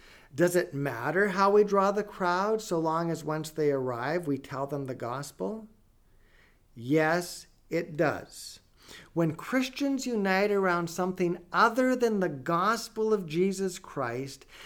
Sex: male